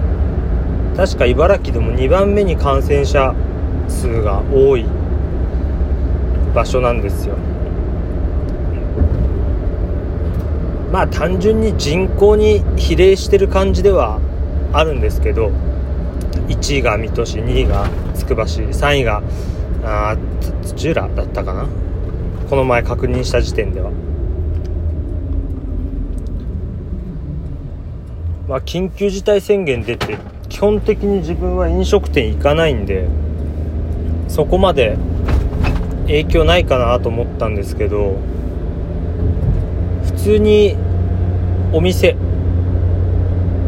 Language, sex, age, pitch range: Japanese, male, 30-49, 75-90 Hz